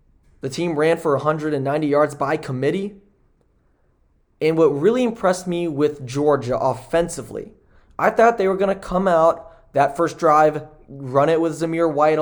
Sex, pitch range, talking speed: male, 140-165 Hz, 155 wpm